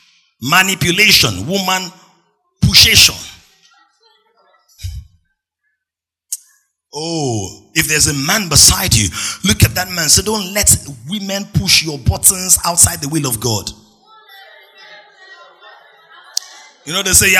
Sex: male